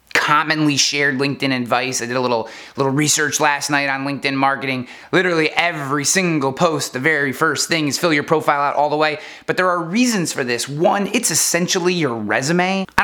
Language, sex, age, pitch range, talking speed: English, male, 20-39, 140-185 Hz, 200 wpm